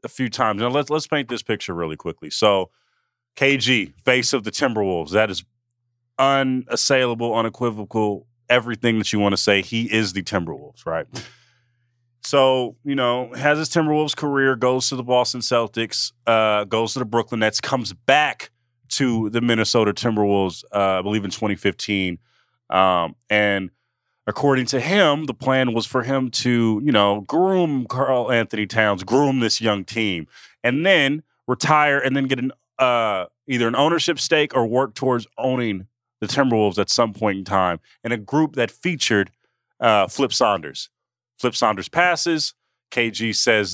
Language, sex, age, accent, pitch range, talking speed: English, male, 30-49, American, 110-135 Hz, 160 wpm